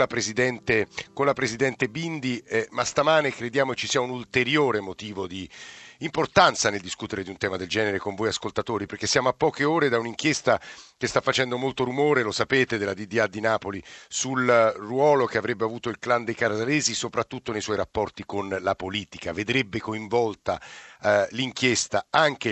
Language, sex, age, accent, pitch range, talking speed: Italian, male, 50-69, native, 110-135 Hz, 170 wpm